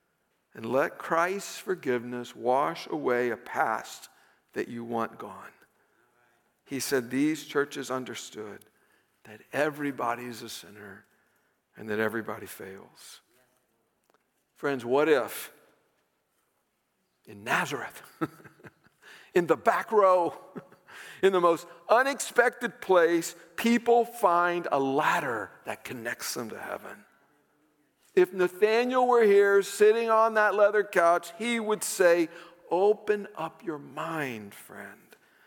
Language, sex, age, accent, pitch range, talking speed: English, male, 60-79, American, 145-210 Hz, 110 wpm